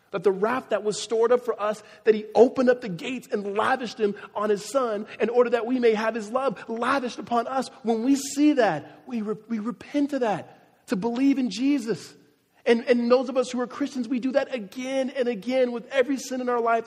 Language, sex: English, male